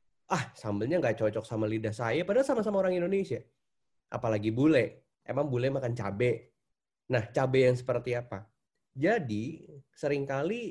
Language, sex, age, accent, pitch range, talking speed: Indonesian, male, 30-49, native, 120-155 Hz, 135 wpm